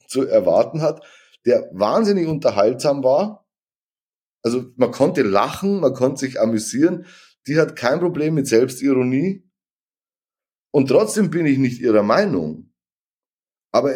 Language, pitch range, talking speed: German, 120-160 Hz, 125 wpm